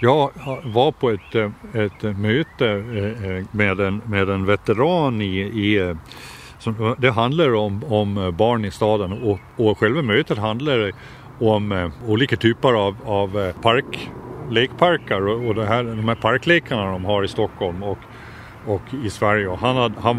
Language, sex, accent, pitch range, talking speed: Swedish, male, native, 100-120 Hz, 150 wpm